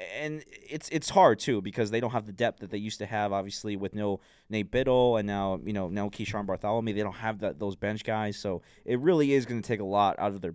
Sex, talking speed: male, 265 wpm